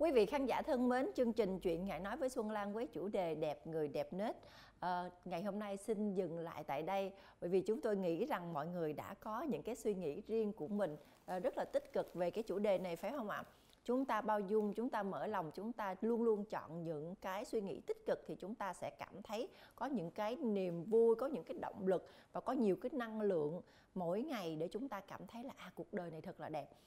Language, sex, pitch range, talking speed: Vietnamese, female, 180-235 Hz, 260 wpm